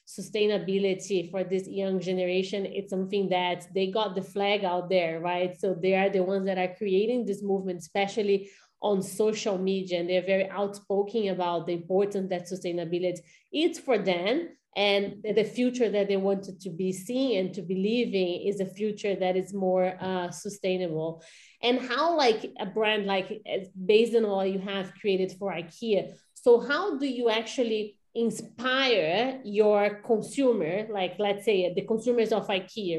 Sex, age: female, 30-49